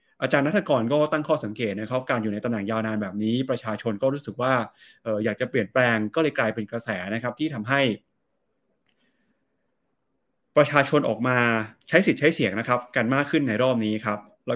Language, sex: Thai, male